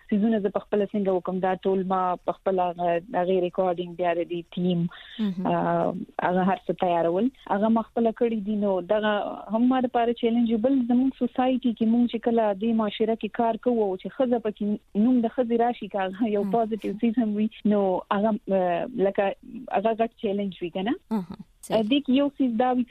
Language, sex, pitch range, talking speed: Urdu, female, 190-230 Hz, 160 wpm